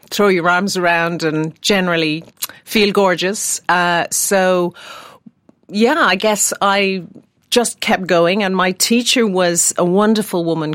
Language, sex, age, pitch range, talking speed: English, female, 50-69, 155-185 Hz, 135 wpm